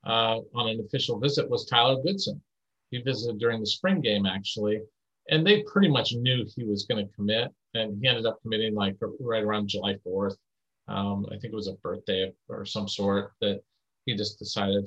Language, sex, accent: English, male, American